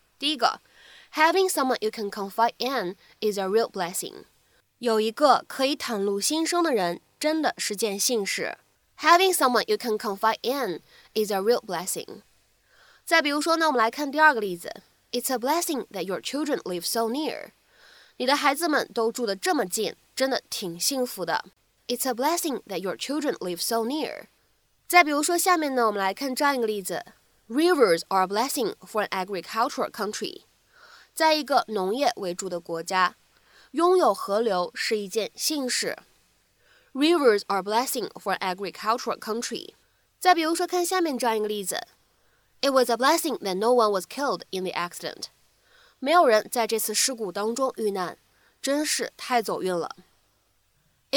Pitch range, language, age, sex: 205-295 Hz, Chinese, 20-39, female